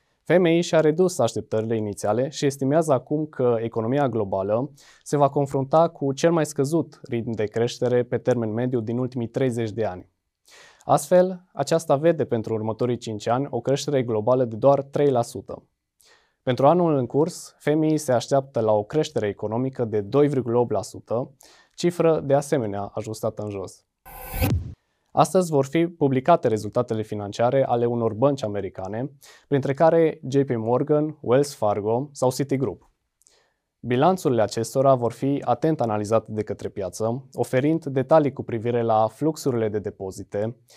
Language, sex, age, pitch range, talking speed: Romanian, male, 20-39, 110-145 Hz, 140 wpm